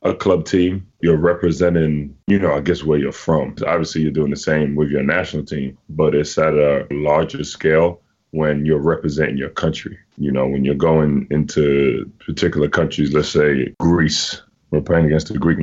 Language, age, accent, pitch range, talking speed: English, 20-39, American, 70-80 Hz, 185 wpm